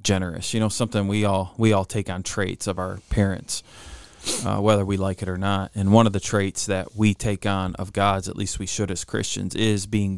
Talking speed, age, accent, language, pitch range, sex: 235 wpm, 20-39, American, English, 95-110 Hz, male